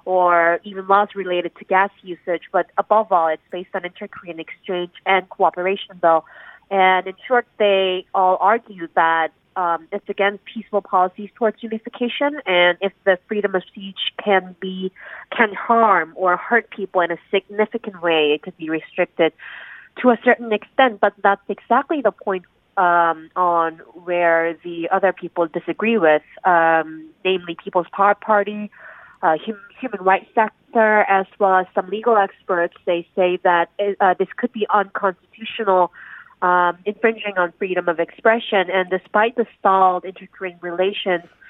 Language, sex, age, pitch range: Korean, female, 30-49, 175-205 Hz